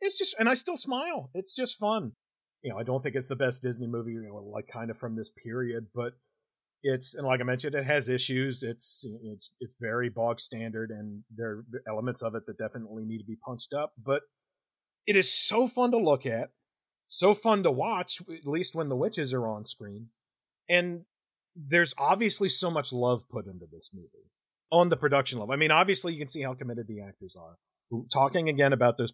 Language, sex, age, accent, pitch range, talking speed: English, male, 40-59, American, 115-150 Hz, 210 wpm